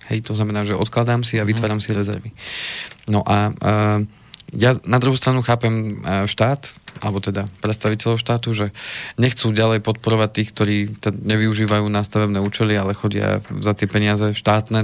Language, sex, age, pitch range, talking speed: Slovak, male, 20-39, 105-110 Hz, 155 wpm